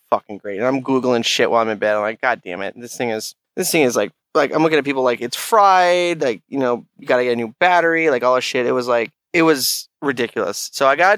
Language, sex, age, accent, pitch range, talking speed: English, male, 20-39, American, 125-165 Hz, 280 wpm